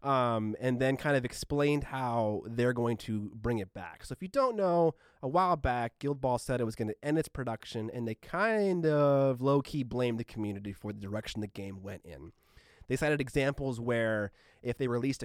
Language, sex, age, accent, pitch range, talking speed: English, male, 30-49, American, 105-130 Hz, 210 wpm